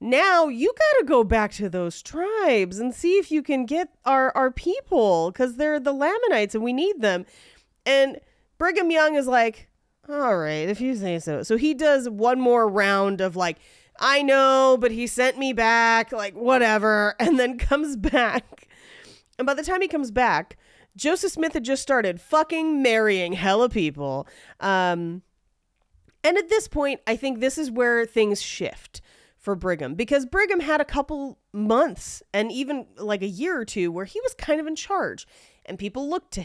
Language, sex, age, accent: English, female, 30-49, American